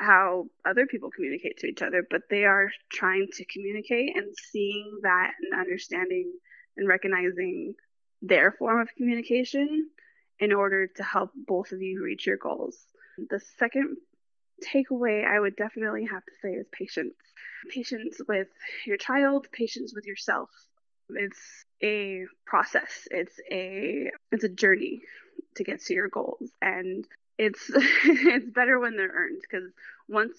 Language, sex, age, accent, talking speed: English, female, 20-39, American, 145 wpm